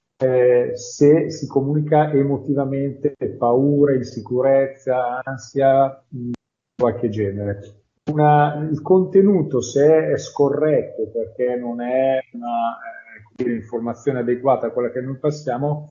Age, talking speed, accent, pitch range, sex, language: 40-59, 110 wpm, native, 125-150 Hz, male, Italian